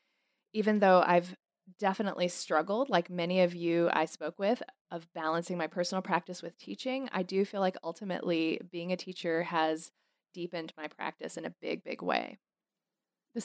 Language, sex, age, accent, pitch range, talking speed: English, female, 20-39, American, 170-205 Hz, 165 wpm